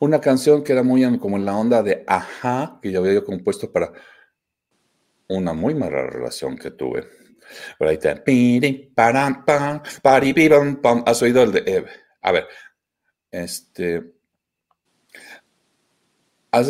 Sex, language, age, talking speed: male, Spanish, 50-69, 120 wpm